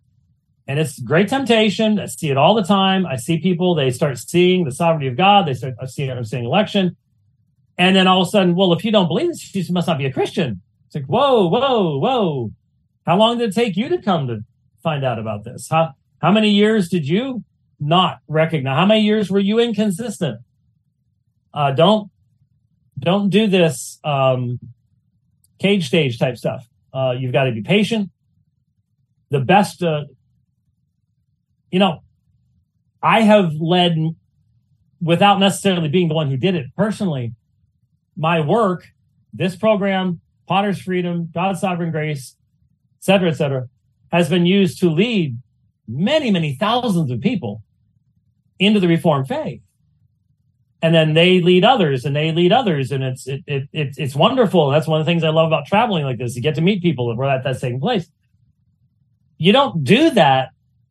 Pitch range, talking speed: 130-185 Hz, 175 wpm